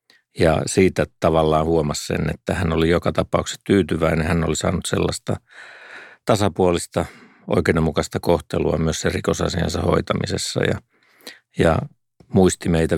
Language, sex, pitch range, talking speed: Finnish, male, 80-95 Hz, 120 wpm